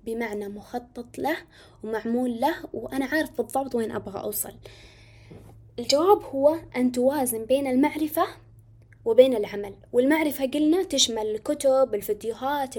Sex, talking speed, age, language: female, 115 wpm, 20-39, Arabic